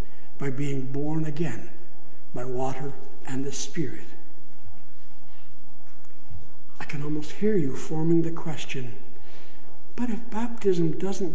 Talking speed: 110 wpm